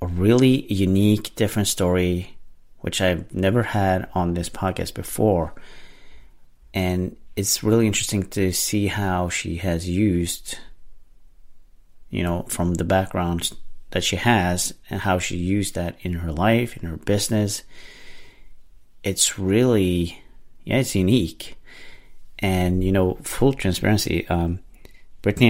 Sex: male